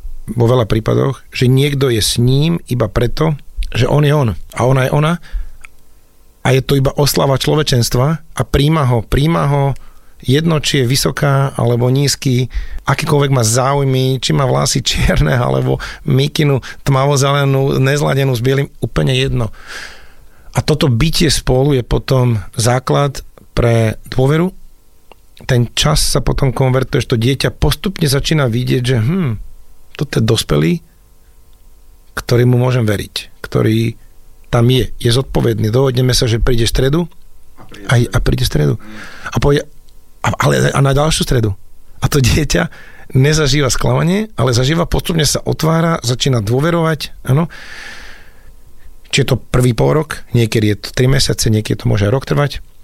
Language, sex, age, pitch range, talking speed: Slovak, male, 40-59, 115-145 Hz, 145 wpm